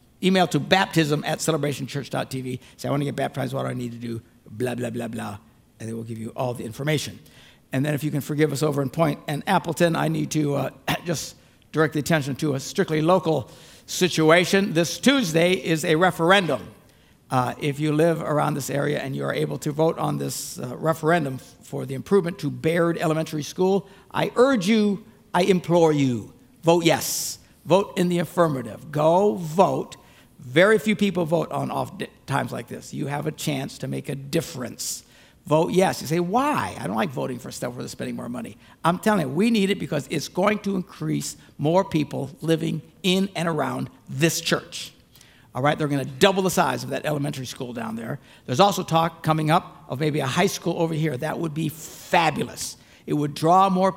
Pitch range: 135-175 Hz